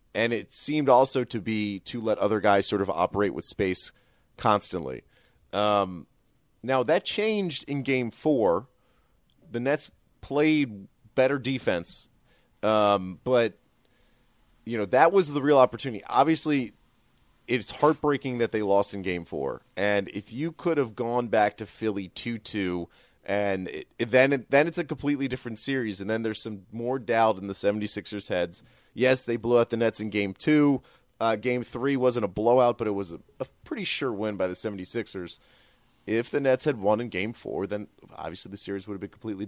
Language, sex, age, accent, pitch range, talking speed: English, male, 30-49, American, 105-130 Hz, 180 wpm